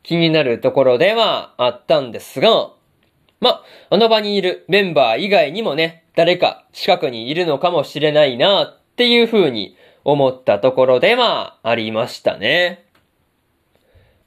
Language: Japanese